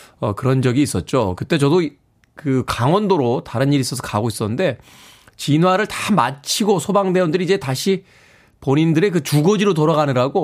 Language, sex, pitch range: Korean, male, 110-165 Hz